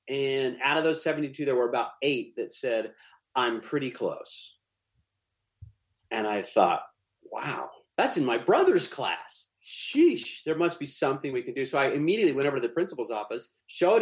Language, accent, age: English, American, 30-49